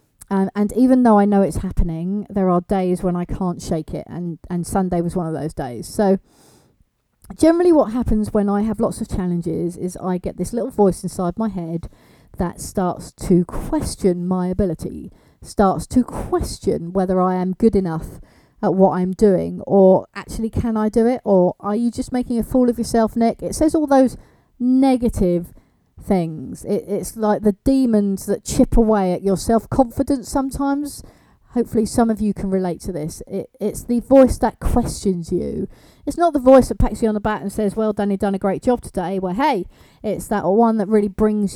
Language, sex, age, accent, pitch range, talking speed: English, female, 40-59, British, 185-230 Hz, 200 wpm